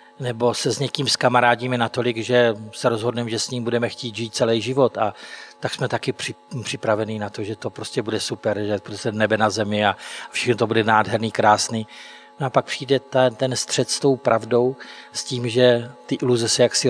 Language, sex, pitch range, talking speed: Czech, male, 110-130 Hz, 205 wpm